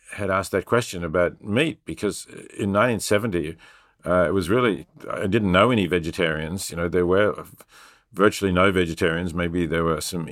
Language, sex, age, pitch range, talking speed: English, male, 50-69, 85-100 Hz, 170 wpm